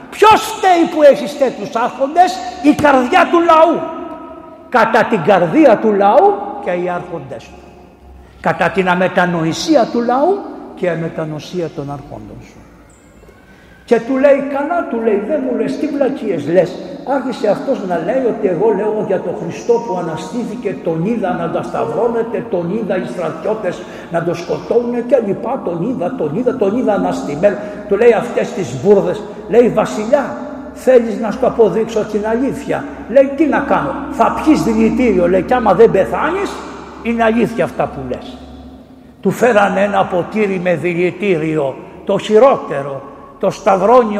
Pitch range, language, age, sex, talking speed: 175-280 Hz, Greek, 60-79, male, 155 wpm